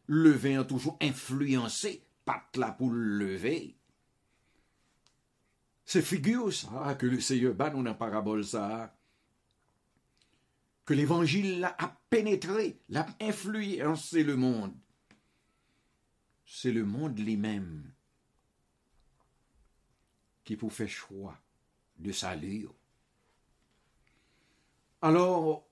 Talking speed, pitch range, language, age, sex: 85 wpm, 110-155 Hz, English, 60-79, male